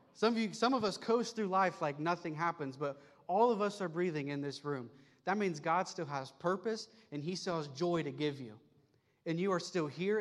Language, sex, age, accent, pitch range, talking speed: English, male, 30-49, American, 135-175 Hz, 225 wpm